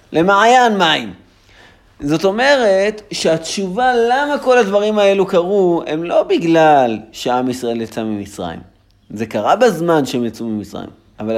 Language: Hebrew